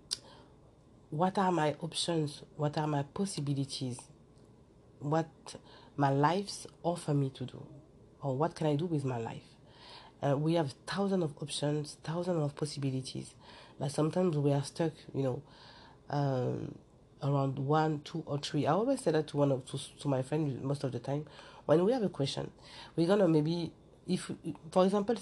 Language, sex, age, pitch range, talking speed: English, female, 40-59, 140-165 Hz, 170 wpm